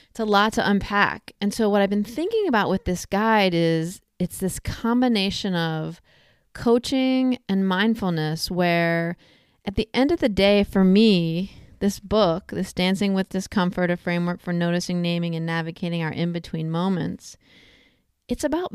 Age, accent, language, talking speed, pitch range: 30-49, American, English, 160 wpm, 170-205 Hz